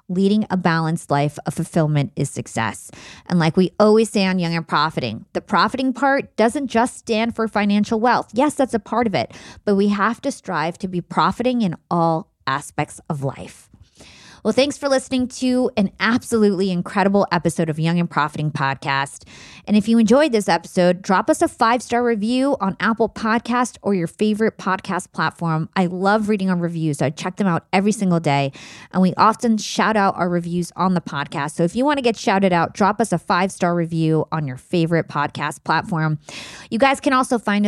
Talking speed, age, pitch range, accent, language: 195 wpm, 30-49, 170-225 Hz, American, English